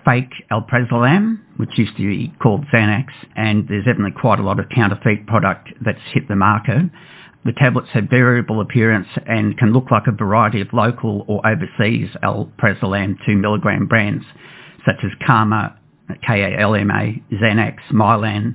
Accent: Australian